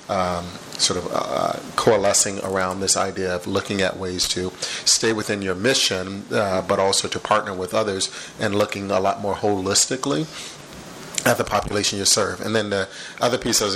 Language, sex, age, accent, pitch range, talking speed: English, male, 30-49, American, 95-105 Hz, 180 wpm